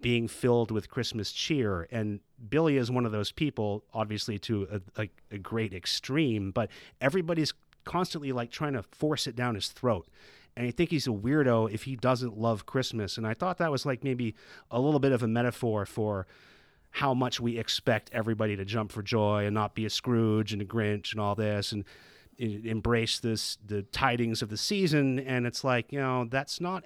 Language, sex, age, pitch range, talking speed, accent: English, male, 30-49, 105-135 Hz, 200 wpm, American